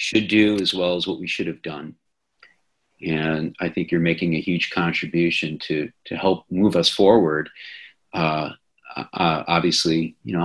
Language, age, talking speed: English, 40-59, 165 wpm